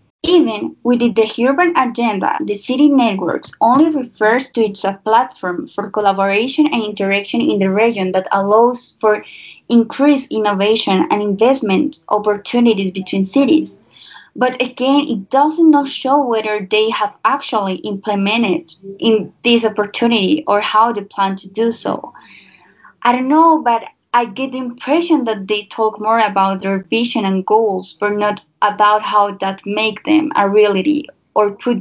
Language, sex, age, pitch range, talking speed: English, female, 20-39, 200-245 Hz, 150 wpm